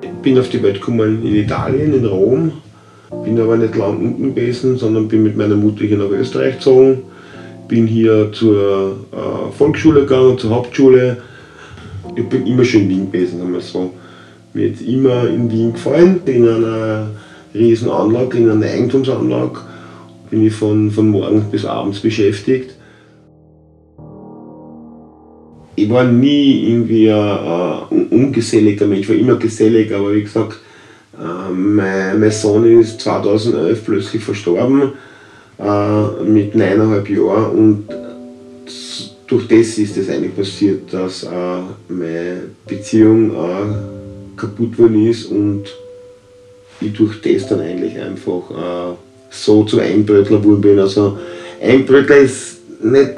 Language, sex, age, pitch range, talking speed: English, male, 40-59, 100-120 Hz, 130 wpm